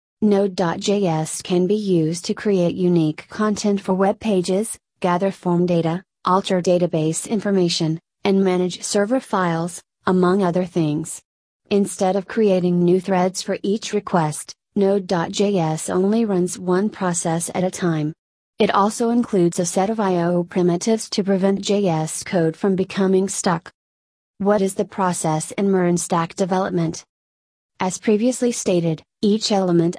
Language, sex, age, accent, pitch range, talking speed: English, female, 30-49, American, 175-200 Hz, 135 wpm